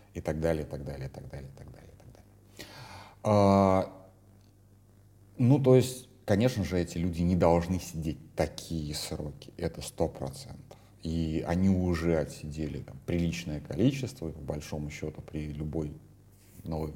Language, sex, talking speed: Russian, male, 155 wpm